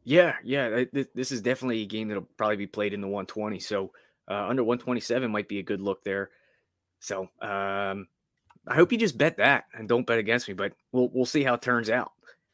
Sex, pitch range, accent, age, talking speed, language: male, 105-135 Hz, American, 20-39, 215 wpm, English